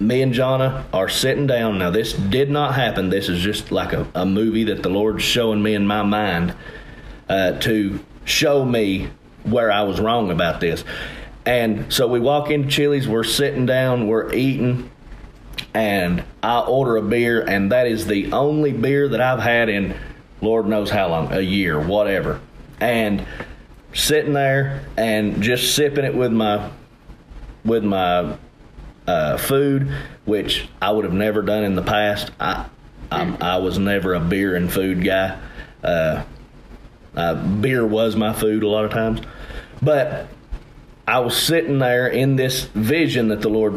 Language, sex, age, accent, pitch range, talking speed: English, male, 40-59, American, 105-130 Hz, 165 wpm